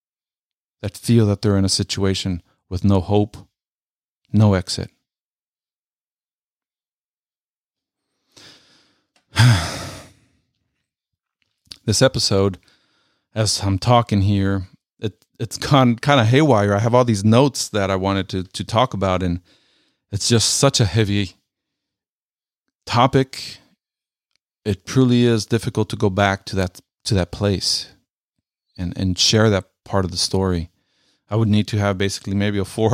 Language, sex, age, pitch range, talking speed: English, male, 40-59, 95-115 Hz, 135 wpm